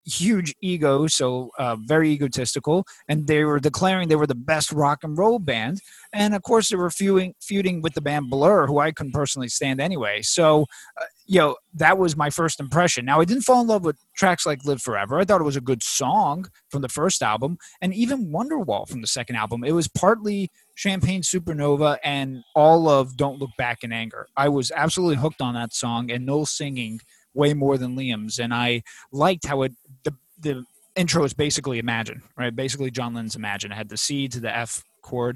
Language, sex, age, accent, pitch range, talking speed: English, male, 30-49, American, 130-180 Hz, 210 wpm